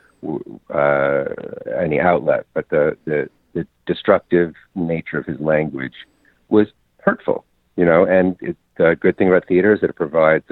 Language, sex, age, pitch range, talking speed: English, male, 50-69, 80-115 Hz, 155 wpm